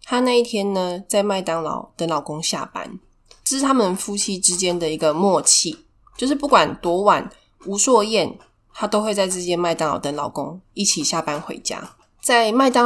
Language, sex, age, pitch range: Chinese, female, 20-39, 165-220 Hz